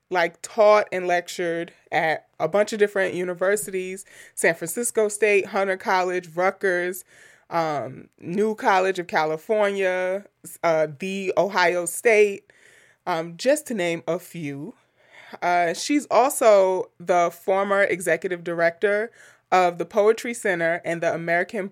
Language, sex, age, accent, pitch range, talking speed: English, male, 30-49, American, 170-220 Hz, 125 wpm